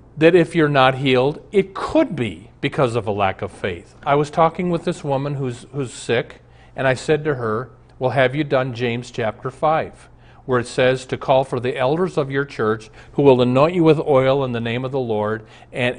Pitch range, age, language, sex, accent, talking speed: 120-155 Hz, 40-59, English, male, American, 220 wpm